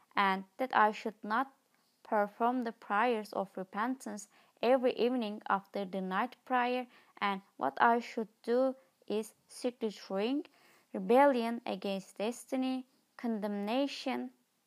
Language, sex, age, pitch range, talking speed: English, female, 20-39, 200-245 Hz, 115 wpm